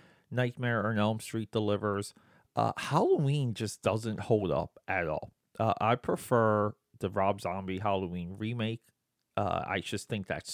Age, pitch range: 30-49, 100-135 Hz